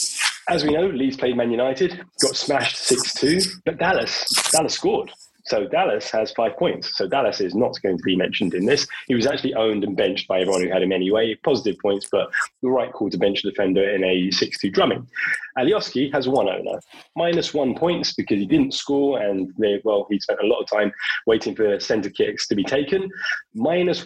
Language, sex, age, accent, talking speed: English, male, 20-39, British, 205 wpm